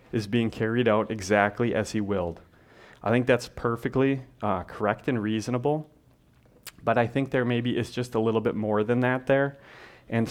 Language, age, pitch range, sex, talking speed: English, 30-49, 105-120 Hz, male, 180 wpm